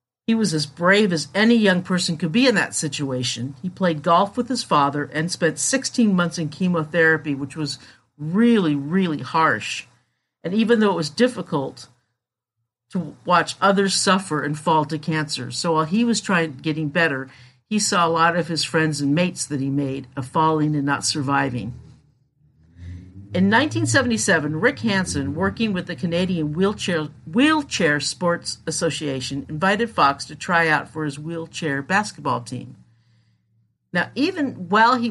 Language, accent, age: English, American, 50-69